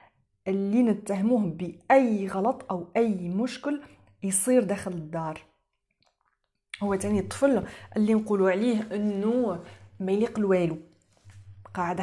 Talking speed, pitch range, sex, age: 105 wpm, 180-245 Hz, female, 30-49